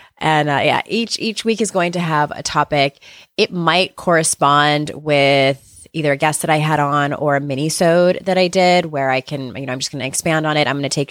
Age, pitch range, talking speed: 20-39, 145-185 Hz, 245 wpm